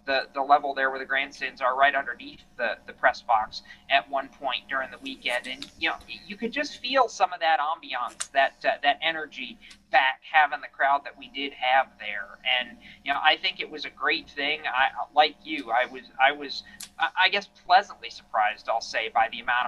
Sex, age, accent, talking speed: male, 40-59, American, 210 wpm